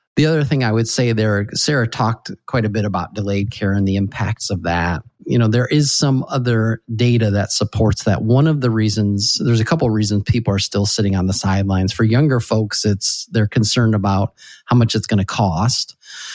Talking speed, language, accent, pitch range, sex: 215 wpm, English, American, 100-125 Hz, male